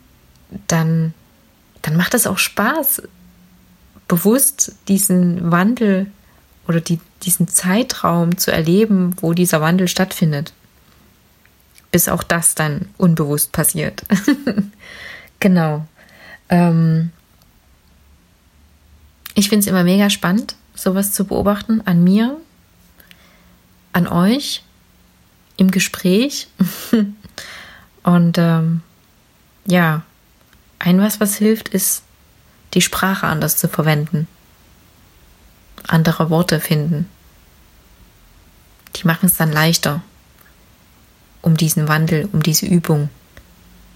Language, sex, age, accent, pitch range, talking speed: German, female, 30-49, German, 155-195 Hz, 95 wpm